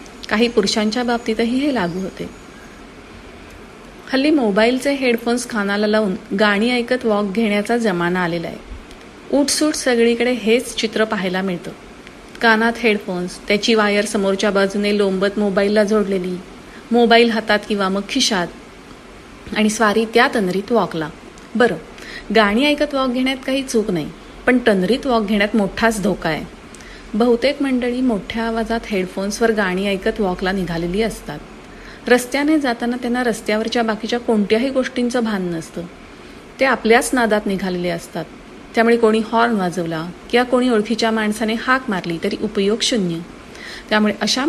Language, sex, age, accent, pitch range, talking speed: Marathi, female, 30-49, native, 200-235 Hz, 130 wpm